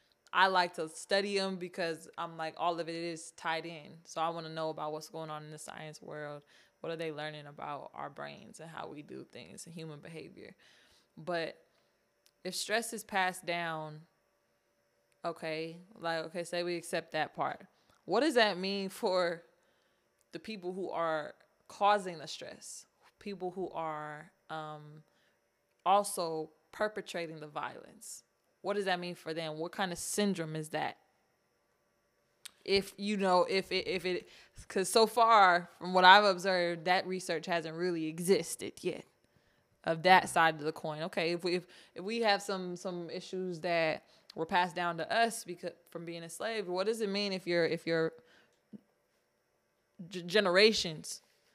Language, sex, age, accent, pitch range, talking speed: English, female, 20-39, American, 160-190 Hz, 170 wpm